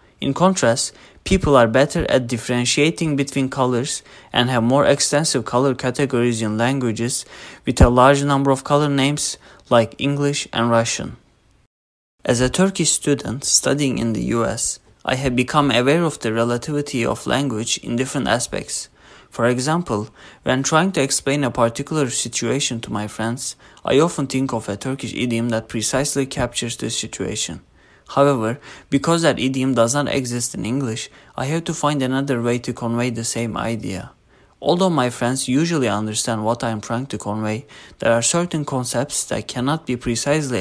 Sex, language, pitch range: male, English, 115-140 Hz